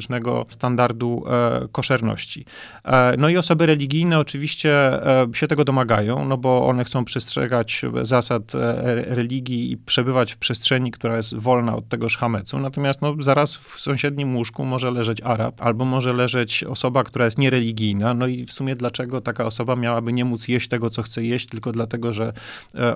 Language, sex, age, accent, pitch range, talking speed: Polish, male, 30-49, native, 115-140 Hz, 175 wpm